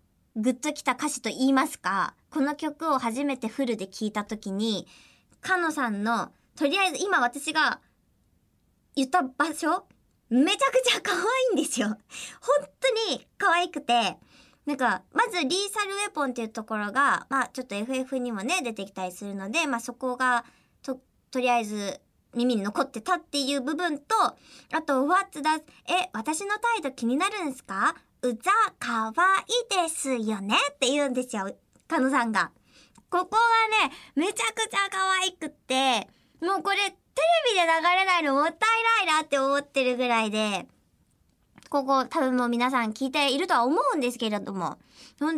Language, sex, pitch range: Japanese, male, 235-315 Hz